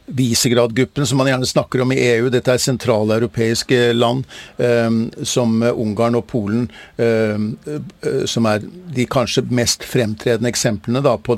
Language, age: Danish, 50-69